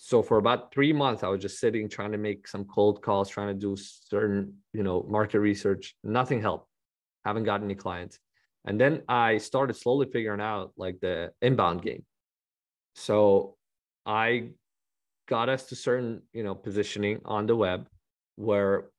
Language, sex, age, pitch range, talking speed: English, male, 20-39, 95-110 Hz, 170 wpm